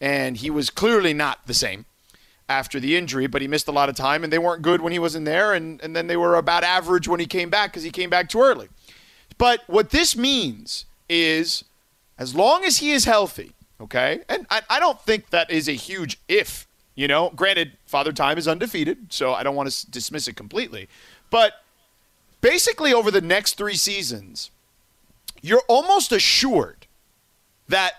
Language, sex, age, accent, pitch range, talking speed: English, male, 40-59, American, 140-210 Hz, 195 wpm